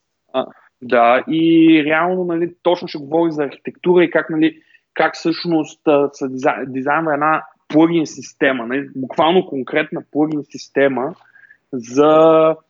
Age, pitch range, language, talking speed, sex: 20-39, 135-170 Hz, Bulgarian, 130 wpm, male